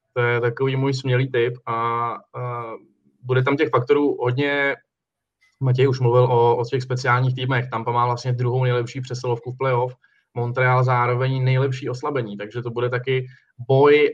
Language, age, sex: Czech, 20-39, male